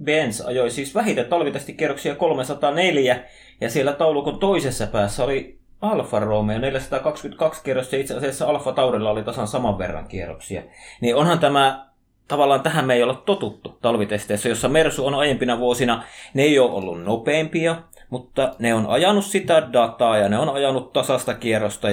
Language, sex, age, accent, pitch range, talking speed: Finnish, male, 30-49, native, 110-145 Hz, 160 wpm